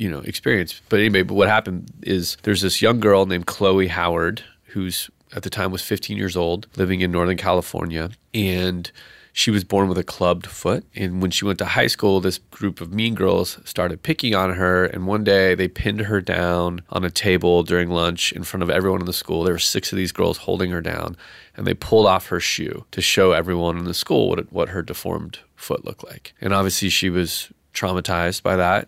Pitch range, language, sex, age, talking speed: 90-105 Hz, English, male, 30-49, 220 wpm